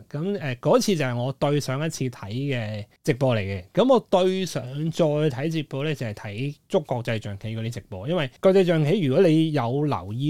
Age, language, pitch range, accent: 30-49, Chinese, 110-155 Hz, native